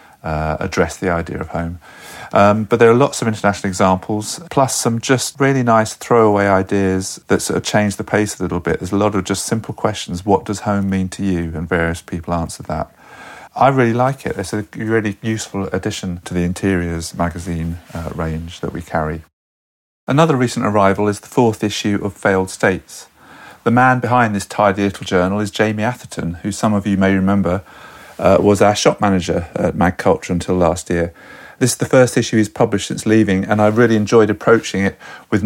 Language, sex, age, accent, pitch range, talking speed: English, male, 40-59, British, 95-110 Hz, 200 wpm